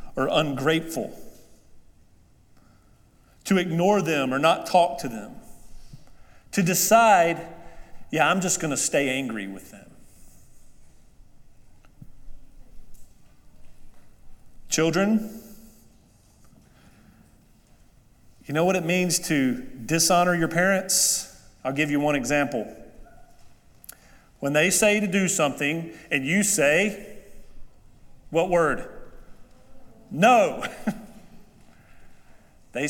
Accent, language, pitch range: American, English, 150-200 Hz